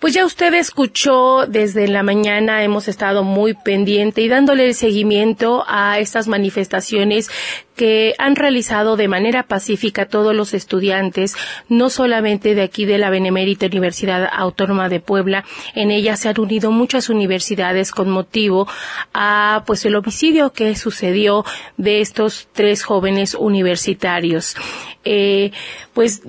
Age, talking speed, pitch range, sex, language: 30-49, 135 wpm, 190-220 Hz, female, Spanish